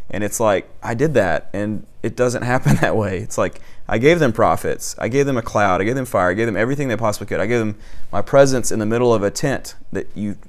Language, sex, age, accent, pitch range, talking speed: English, male, 30-49, American, 100-130 Hz, 270 wpm